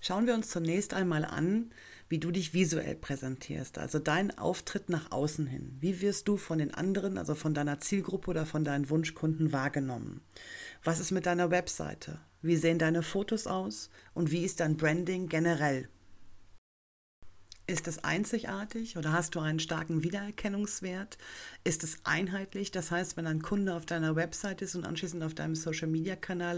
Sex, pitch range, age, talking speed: female, 155-190 Hz, 40-59, 165 wpm